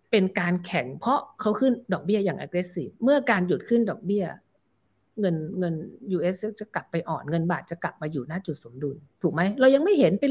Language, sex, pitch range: Thai, female, 165-215 Hz